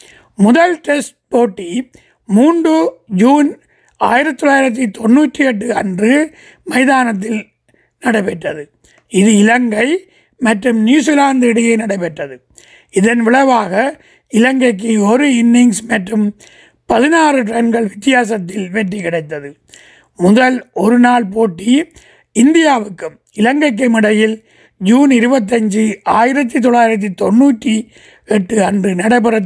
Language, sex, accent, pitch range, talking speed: Tamil, male, native, 210-265 Hz, 90 wpm